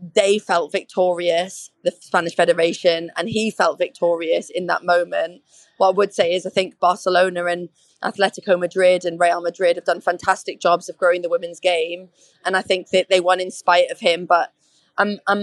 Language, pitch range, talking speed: English, 180-205 Hz, 190 wpm